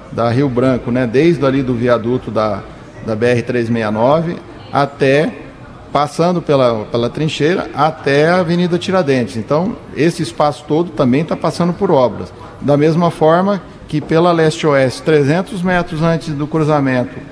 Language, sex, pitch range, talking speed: Portuguese, male, 125-150 Hz, 140 wpm